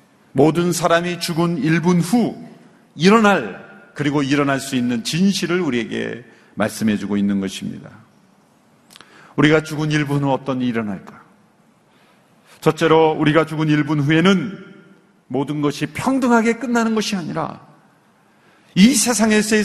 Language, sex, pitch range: Korean, male, 125-185 Hz